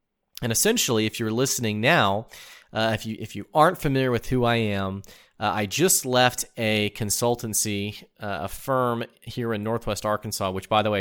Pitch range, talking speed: 95-115 Hz, 185 wpm